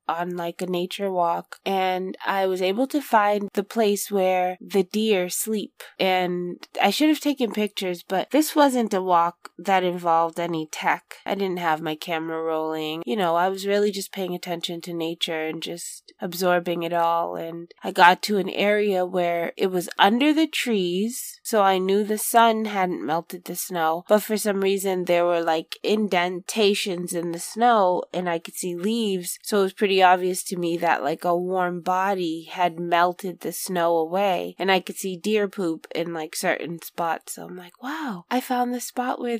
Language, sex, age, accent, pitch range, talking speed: English, female, 20-39, American, 180-220 Hz, 190 wpm